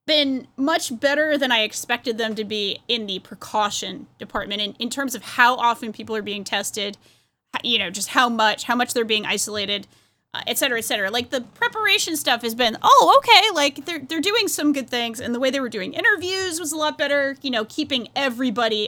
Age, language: 20-39, English